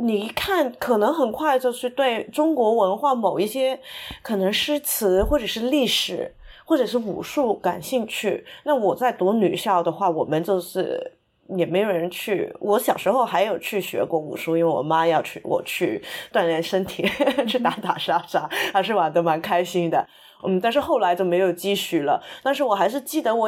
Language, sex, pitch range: Chinese, female, 190-265 Hz